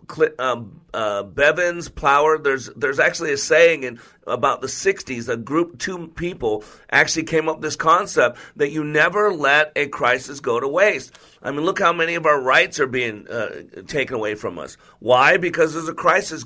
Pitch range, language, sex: 140-170 Hz, English, male